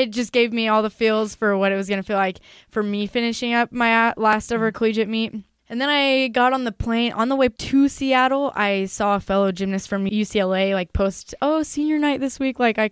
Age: 10-29